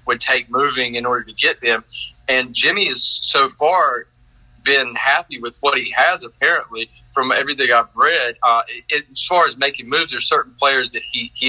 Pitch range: 115-130 Hz